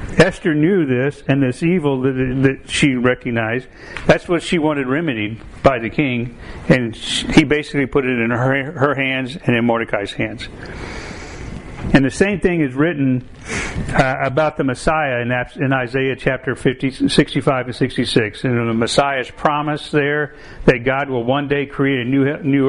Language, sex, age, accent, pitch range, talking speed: English, male, 50-69, American, 125-155 Hz, 170 wpm